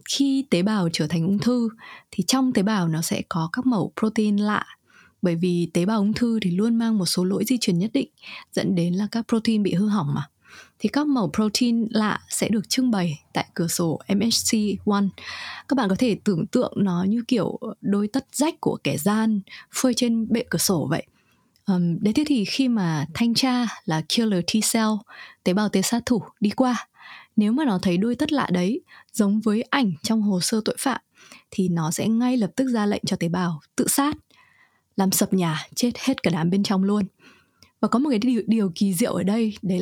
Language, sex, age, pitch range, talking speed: Vietnamese, female, 20-39, 190-245 Hz, 215 wpm